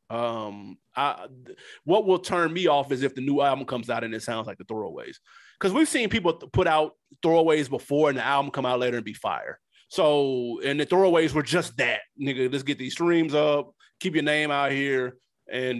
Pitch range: 125-165 Hz